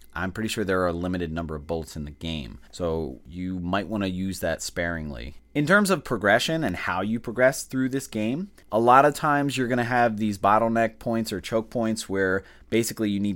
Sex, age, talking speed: male, 30-49, 225 wpm